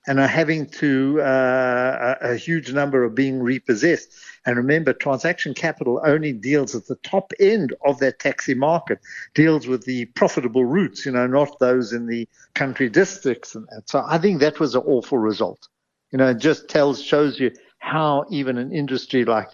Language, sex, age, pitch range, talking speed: English, male, 60-79, 115-145 Hz, 185 wpm